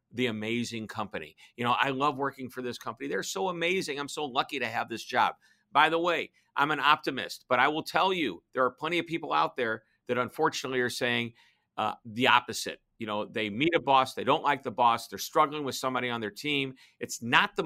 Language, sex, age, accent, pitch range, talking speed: English, male, 50-69, American, 115-140 Hz, 230 wpm